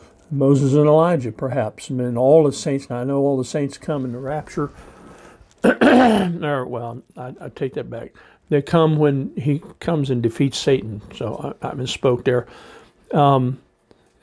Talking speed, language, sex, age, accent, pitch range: 170 wpm, English, male, 60-79, American, 130-155 Hz